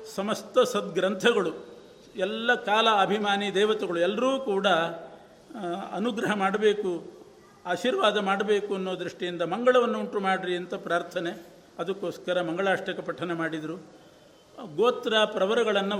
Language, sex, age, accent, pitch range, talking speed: Kannada, male, 50-69, native, 180-210 Hz, 95 wpm